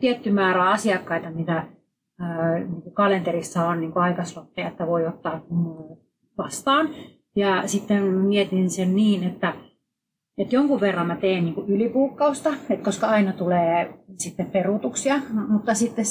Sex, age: female, 30-49